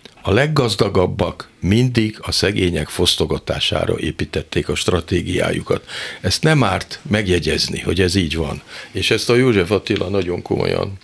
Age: 50-69